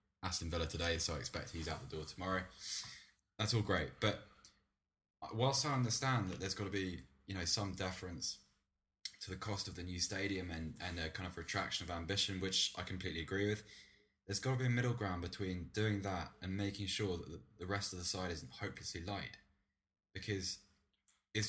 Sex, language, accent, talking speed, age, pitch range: male, English, British, 195 wpm, 10-29, 85-105 Hz